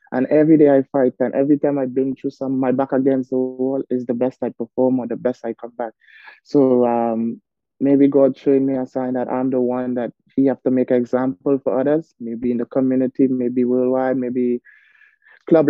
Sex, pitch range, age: male, 125-135 Hz, 20-39